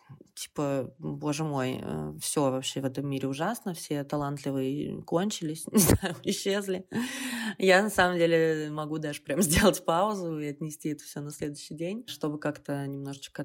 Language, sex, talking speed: Russian, female, 150 wpm